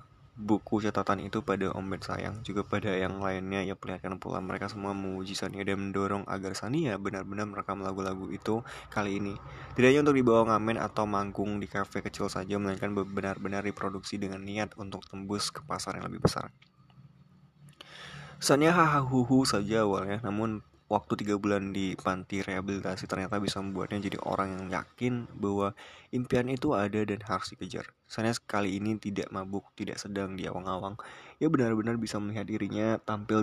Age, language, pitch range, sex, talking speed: 20-39, Indonesian, 95-110 Hz, male, 160 wpm